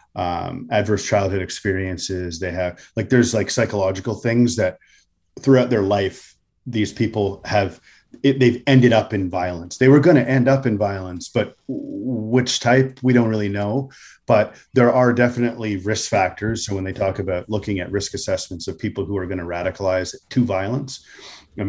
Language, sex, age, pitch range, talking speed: English, male, 30-49, 95-120 Hz, 175 wpm